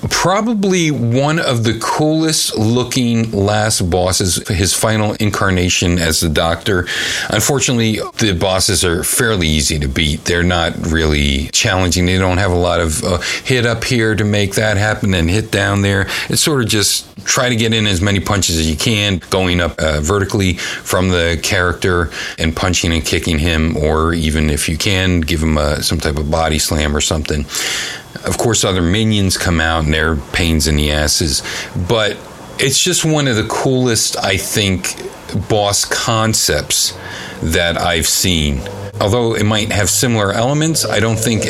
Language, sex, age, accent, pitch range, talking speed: English, male, 40-59, American, 80-110 Hz, 175 wpm